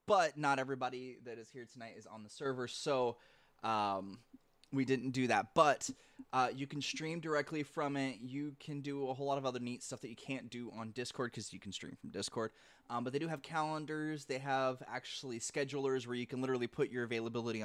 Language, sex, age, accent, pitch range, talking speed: English, male, 20-39, American, 115-145 Hz, 220 wpm